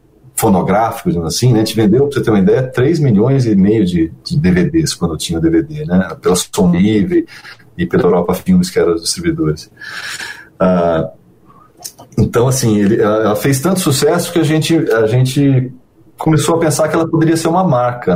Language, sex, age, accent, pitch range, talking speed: Portuguese, male, 40-59, Brazilian, 105-165 Hz, 180 wpm